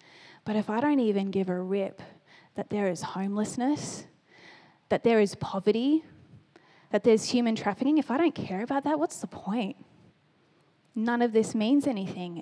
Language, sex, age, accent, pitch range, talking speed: English, female, 10-29, Australian, 185-215 Hz, 165 wpm